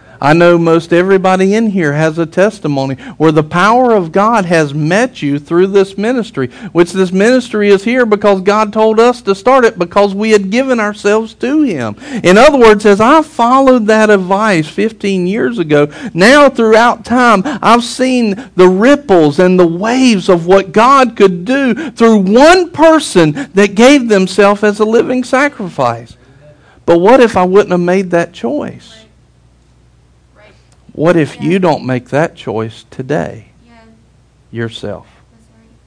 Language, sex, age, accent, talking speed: English, male, 50-69, American, 155 wpm